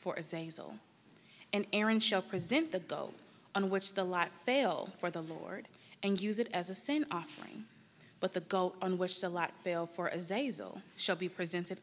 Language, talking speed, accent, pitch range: English, 185 wpm, American, 180-220 Hz